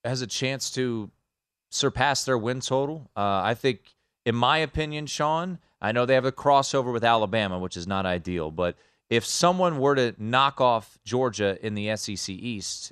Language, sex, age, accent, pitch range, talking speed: English, male, 30-49, American, 100-135 Hz, 180 wpm